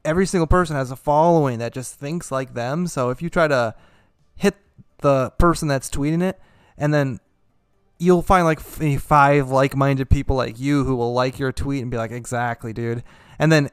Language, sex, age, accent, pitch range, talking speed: English, male, 20-39, American, 125-165 Hz, 190 wpm